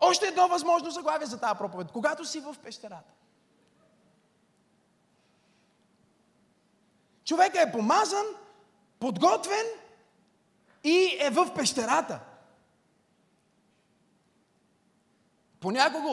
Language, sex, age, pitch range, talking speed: Bulgarian, male, 30-49, 205-285 Hz, 75 wpm